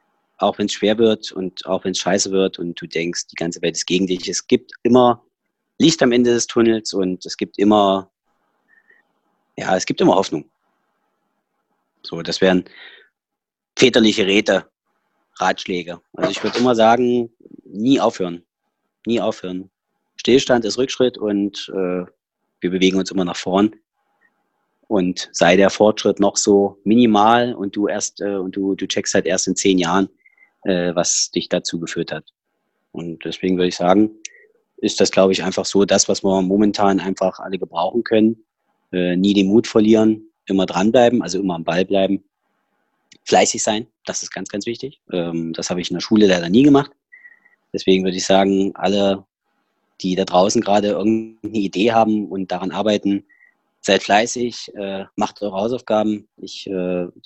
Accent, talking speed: German, 165 wpm